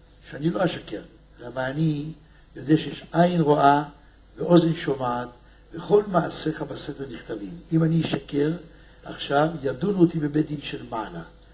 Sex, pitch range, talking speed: male, 150-185 Hz, 130 wpm